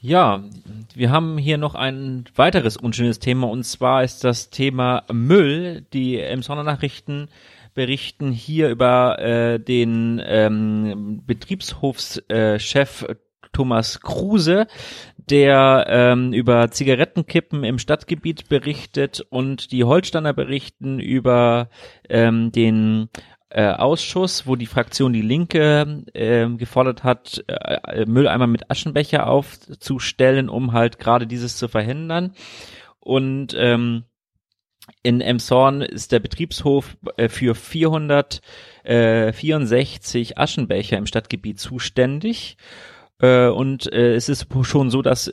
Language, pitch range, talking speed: German, 115-140 Hz, 115 wpm